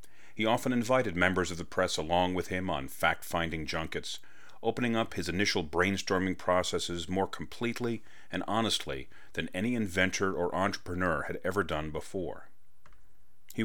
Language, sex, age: English, male, 40-59